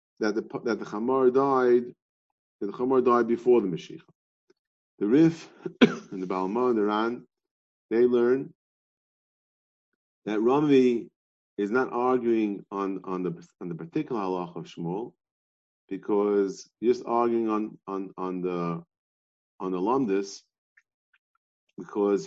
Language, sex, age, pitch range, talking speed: English, male, 40-59, 95-120 Hz, 130 wpm